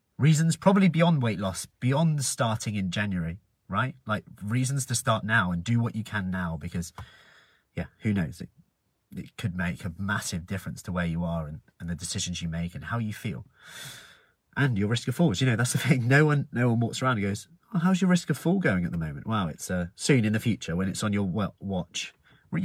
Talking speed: 235 wpm